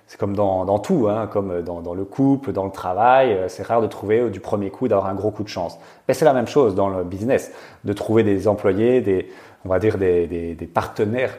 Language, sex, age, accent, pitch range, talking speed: French, male, 30-49, French, 95-115 Hz, 230 wpm